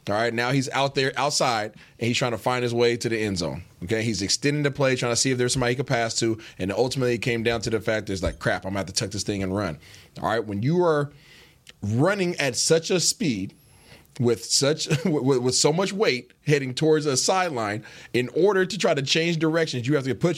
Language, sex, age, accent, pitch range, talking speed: English, male, 20-39, American, 120-145 Hz, 245 wpm